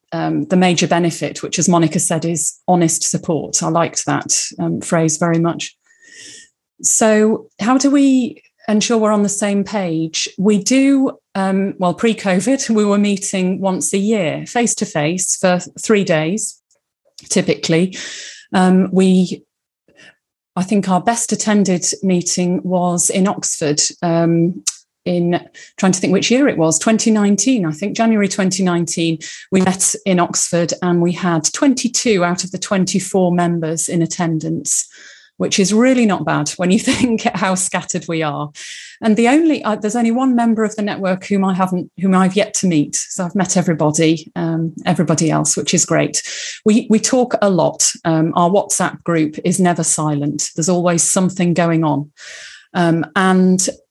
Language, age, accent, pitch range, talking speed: English, 30-49, British, 170-215 Hz, 160 wpm